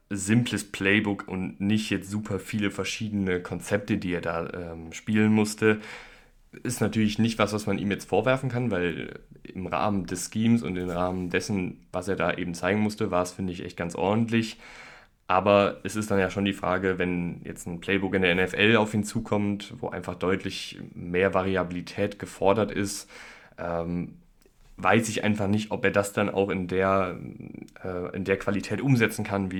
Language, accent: German, German